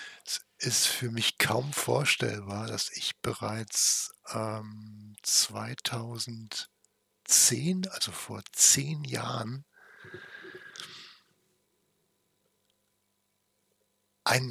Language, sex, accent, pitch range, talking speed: German, male, German, 105-120 Hz, 60 wpm